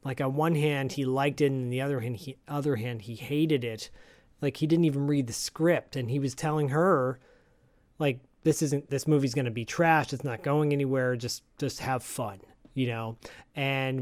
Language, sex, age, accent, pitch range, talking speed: English, male, 30-49, American, 125-155 Hz, 210 wpm